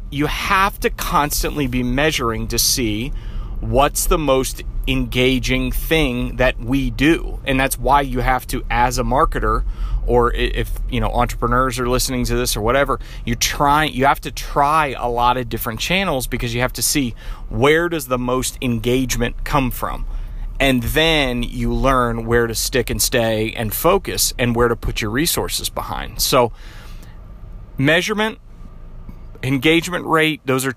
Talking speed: 160 wpm